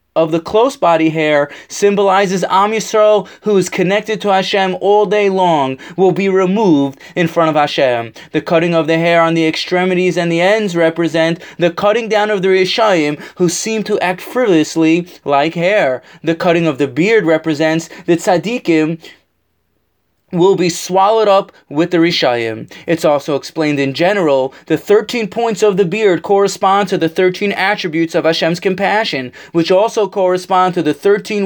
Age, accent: 20-39, American